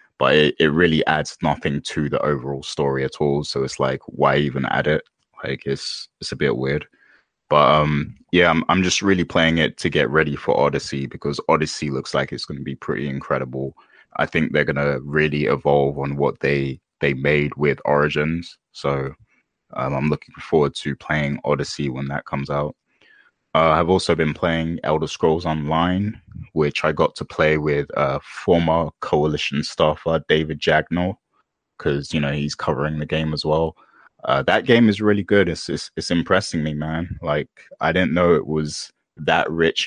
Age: 20-39